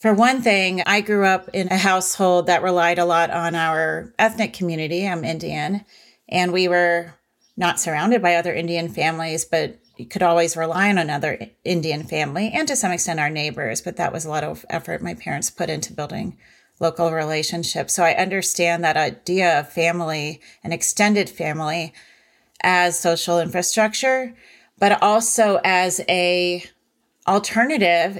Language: English